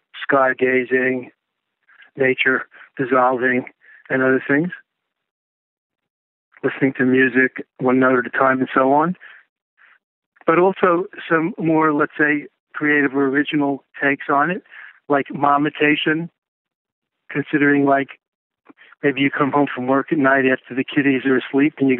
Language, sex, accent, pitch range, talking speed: English, male, American, 125-140 Hz, 135 wpm